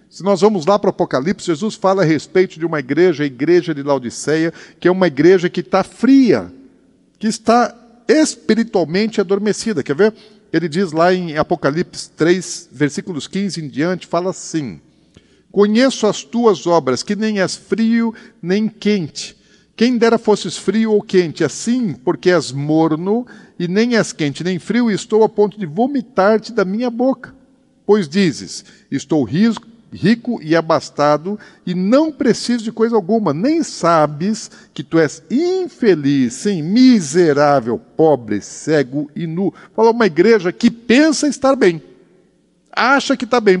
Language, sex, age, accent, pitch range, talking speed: Portuguese, male, 50-69, Brazilian, 170-230 Hz, 155 wpm